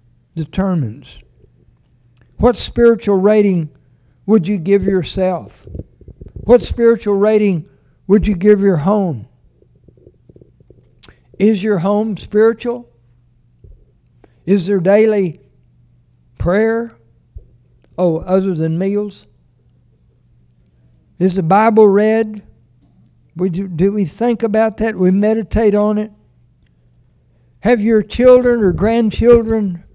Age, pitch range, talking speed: 60-79, 150-215 Hz, 95 wpm